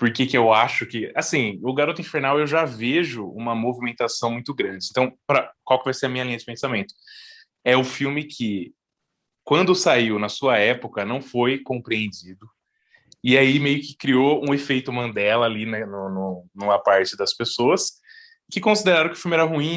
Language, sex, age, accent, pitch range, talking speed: Portuguese, male, 20-39, Brazilian, 110-145 Hz, 190 wpm